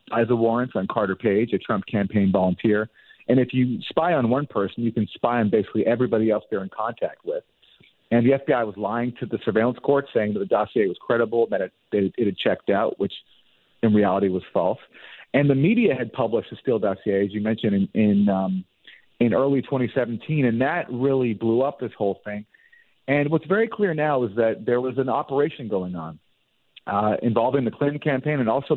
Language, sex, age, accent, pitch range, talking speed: English, male, 40-59, American, 110-140 Hz, 205 wpm